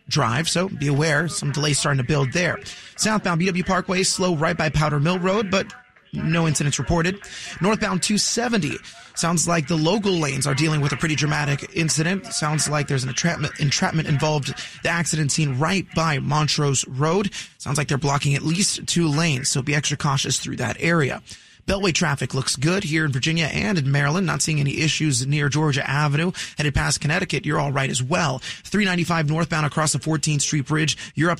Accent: American